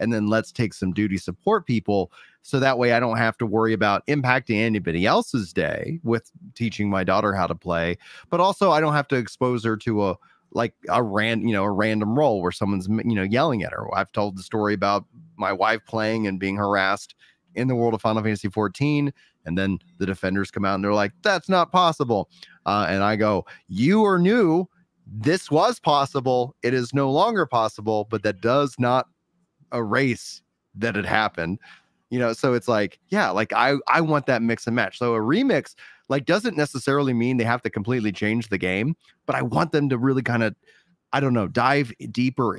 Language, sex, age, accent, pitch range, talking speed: English, male, 30-49, American, 105-140 Hz, 210 wpm